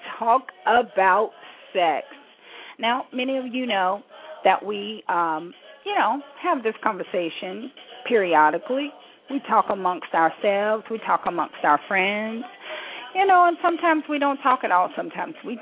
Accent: American